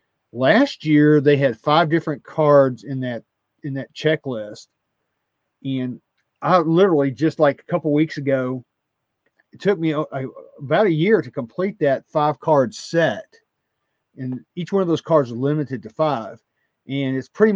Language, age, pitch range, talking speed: English, 40-59, 135-160 Hz, 165 wpm